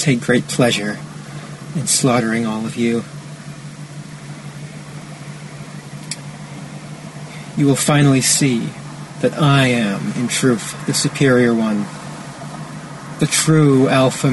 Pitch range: 120-155 Hz